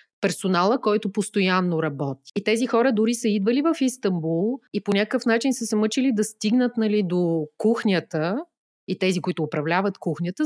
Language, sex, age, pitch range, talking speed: Bulgarian, female, 30-49, 175-235 Hz, 165 wpm